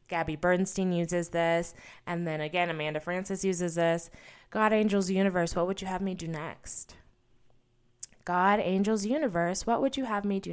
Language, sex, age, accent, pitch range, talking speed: English, female, 20-39, American, 170-220 Hz, 170 wpm